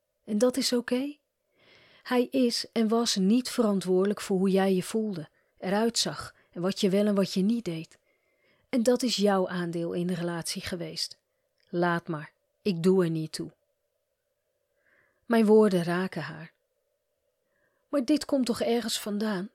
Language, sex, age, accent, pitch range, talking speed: Dutch, female, 40-59, Dutch, 185-255 Hz, 160 wpm